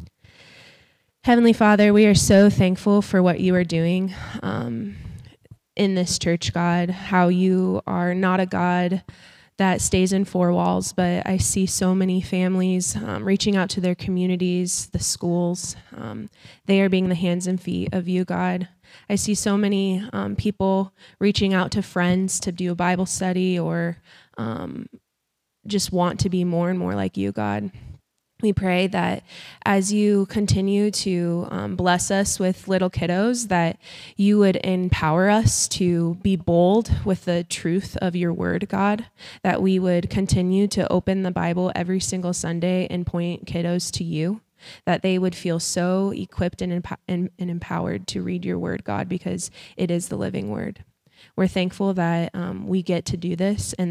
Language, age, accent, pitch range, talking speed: English, 20-39, American, 175-190 Hz, 170 wpm